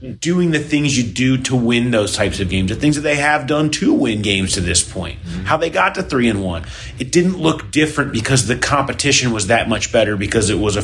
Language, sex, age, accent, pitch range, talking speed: English, male, 30-49, American, 100-135 Hz, 250 wpm